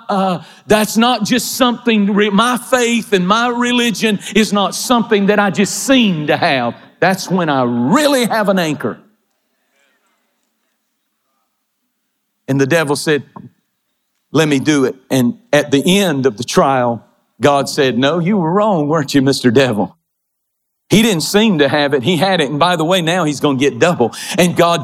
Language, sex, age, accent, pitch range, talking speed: English, male, 50-69, American, 150-205 Hz, 175 wpm